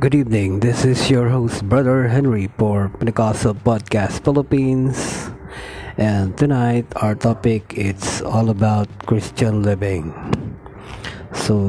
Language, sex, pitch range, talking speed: Filipino, male, 100-125 Hz, 115 wpm